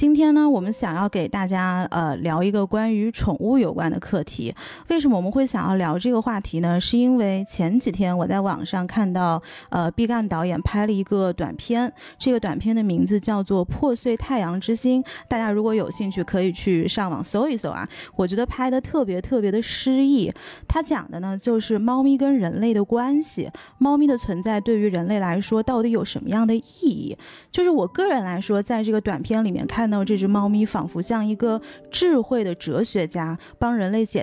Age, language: 20-39, Chinese